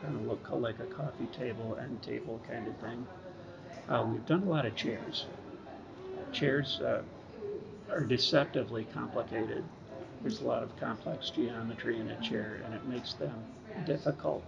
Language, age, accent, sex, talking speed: English, 50-69, American, male, 160 wpm